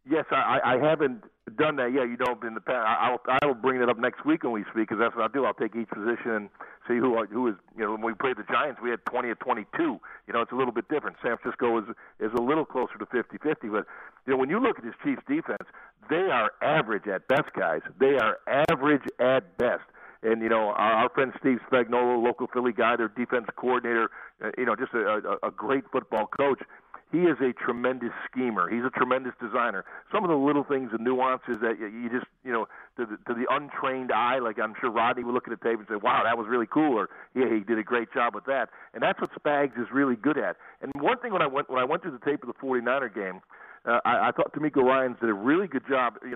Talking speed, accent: 255 wpm, American